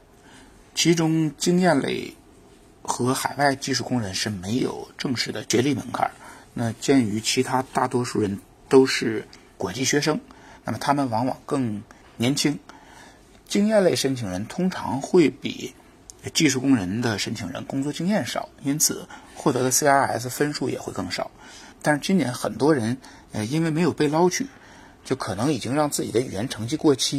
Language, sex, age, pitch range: Chinese, male, 50-69, 115-150 Hz